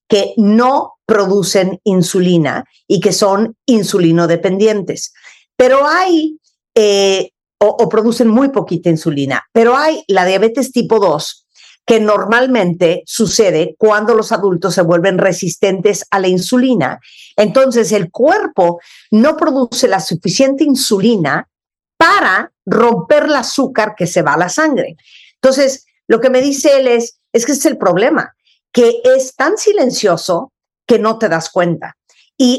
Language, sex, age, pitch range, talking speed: Spanish, female, 50-69, 180-255 Hz, 140 wpm